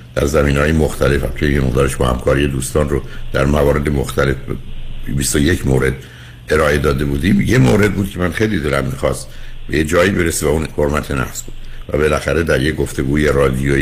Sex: male